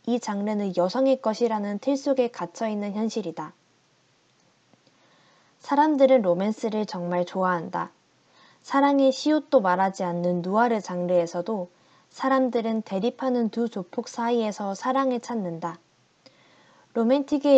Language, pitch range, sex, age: Korean, 185-255 Hz, female, 20-39